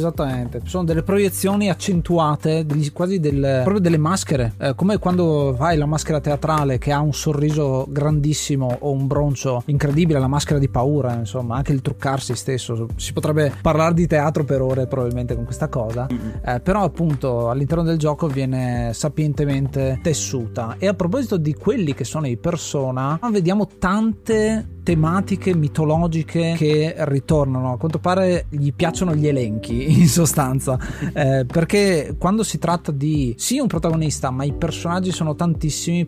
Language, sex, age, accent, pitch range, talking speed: Italian, male, 30-49, native, 130-165 Hz, 155 wpm